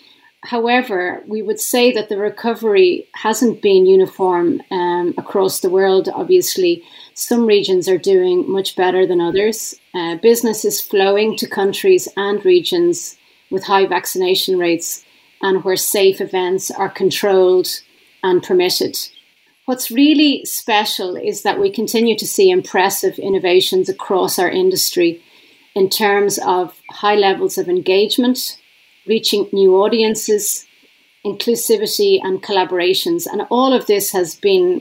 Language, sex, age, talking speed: English, female, 30-49, 130 wpm